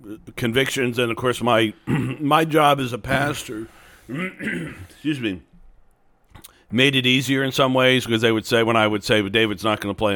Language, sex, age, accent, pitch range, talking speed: English, male, 50-69, American, 95-120 Hz, 190 wpm